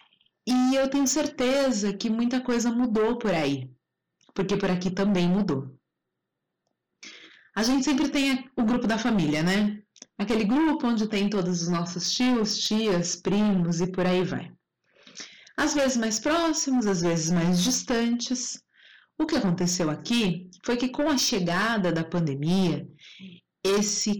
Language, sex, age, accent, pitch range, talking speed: Portuguese, female, 30-49, Brazilian, 180-255 Hz, 145 wpm